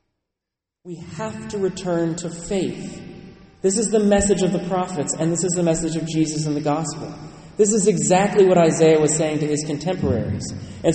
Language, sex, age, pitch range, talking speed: English, male, 30-49, 180-225 Hz, 185 wpm